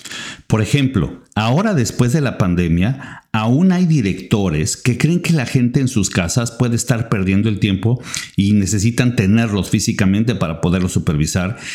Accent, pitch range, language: Mexican, 95-130 Hz, Spanish